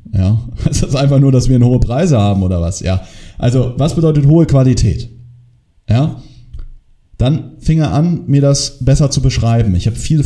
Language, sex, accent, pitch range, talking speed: German, male, German, 110-140 Hz, 185 wpm